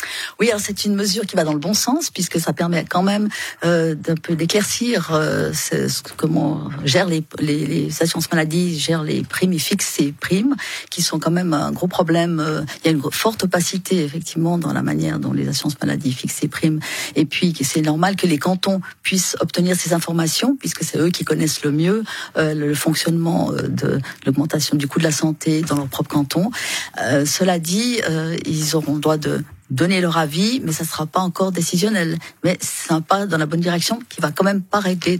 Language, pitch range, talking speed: French, 150-180 Hz, 220 wpm